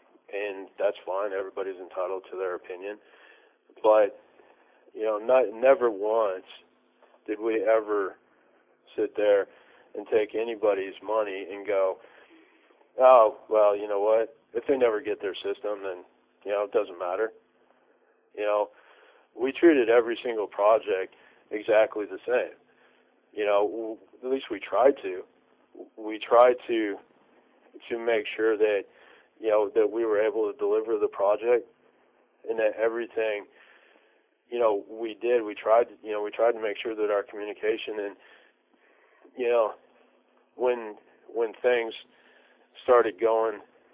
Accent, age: American, 40-59